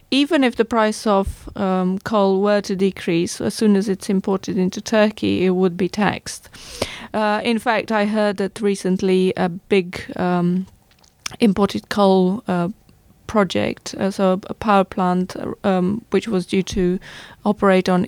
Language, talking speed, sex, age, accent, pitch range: English, 155 wpm, female, 30-49, British, 185-210 Hz